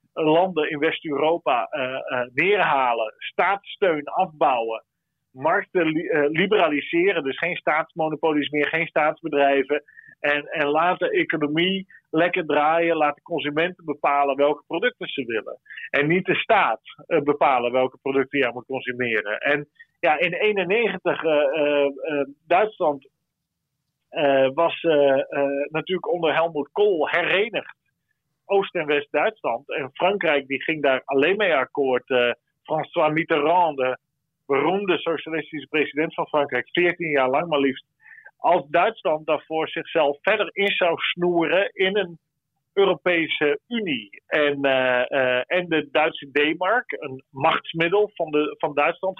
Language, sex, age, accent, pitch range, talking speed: Dutch, male, 40-59, Dutch, 145-175 Hz, 125 wpm